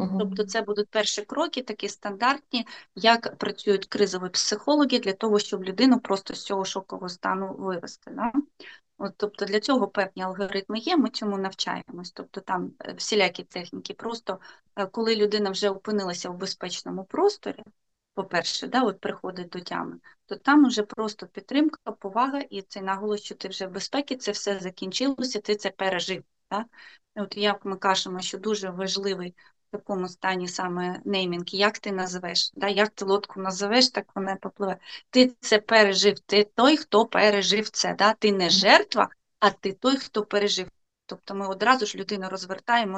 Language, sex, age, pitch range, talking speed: Ukrainian, female, 20-39, 195-225 Hz, 160 wpm